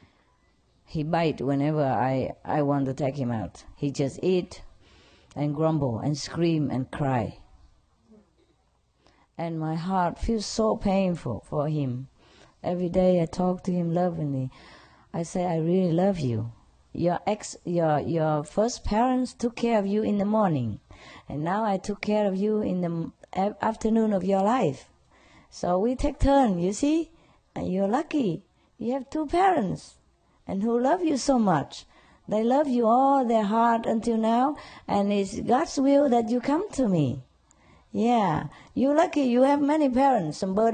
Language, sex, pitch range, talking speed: English, female, 160-225 Hz, 165 wpm